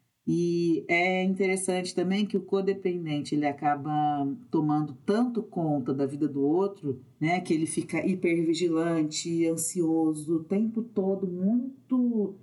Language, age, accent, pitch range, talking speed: Portuguese, 40-59, Brazilian, 155-195 Hz, 125 wpm